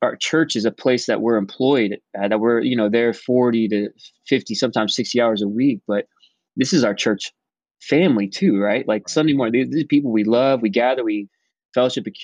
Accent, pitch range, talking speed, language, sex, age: American, 100-120 Hz, 205 wpm, English, male, 20-39